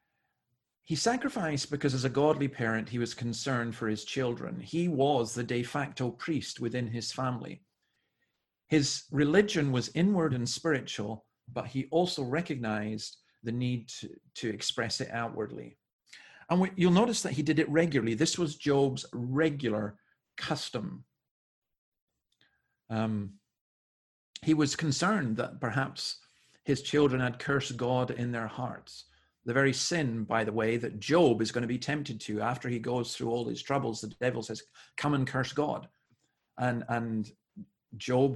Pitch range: 115-145 Hz